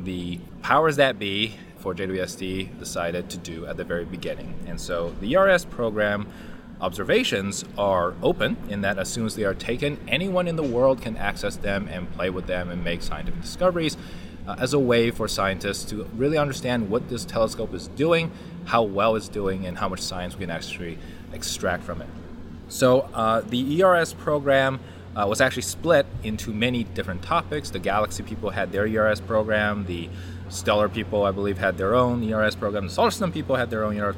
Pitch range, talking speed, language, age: 90-120 Hz, 195 wpm, English, 30-49